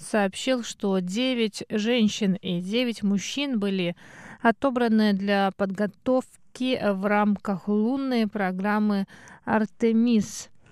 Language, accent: Russian, native